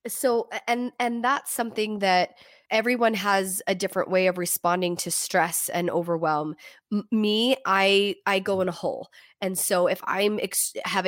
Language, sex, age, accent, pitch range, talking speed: English, female, 20-39, American, 180-220 Hz, 155 wpm